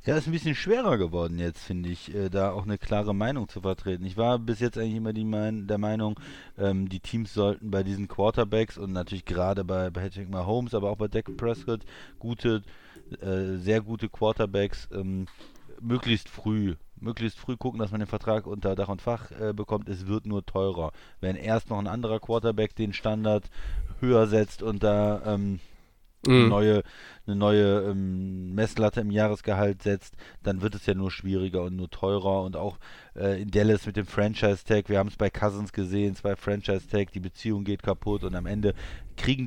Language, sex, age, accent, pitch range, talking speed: German, male, 20-39, German, 95-110 Hz, 190 wpm